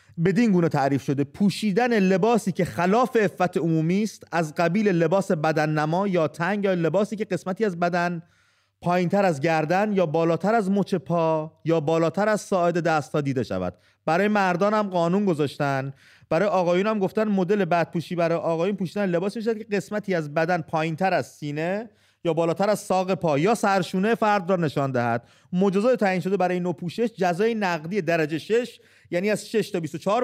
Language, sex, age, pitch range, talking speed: English, male, 30-49, 160-200 Hz, 175 wpm